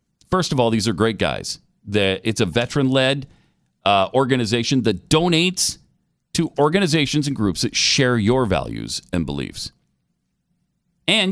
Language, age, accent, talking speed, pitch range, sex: English, 40-59, American, 135 wpm, 105-160 Hz, male